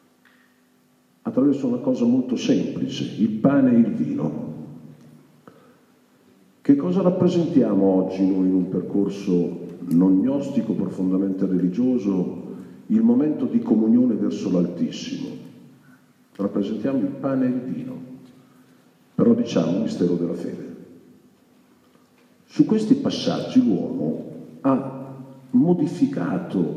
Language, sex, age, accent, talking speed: Italian, male, 50-69, native, 105 wpm